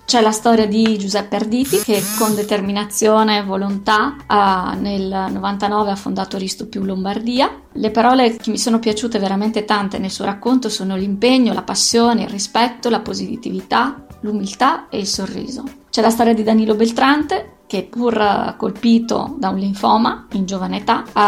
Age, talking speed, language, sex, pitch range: 20-39, 165 wpm, Italian, female, 205-235 Hz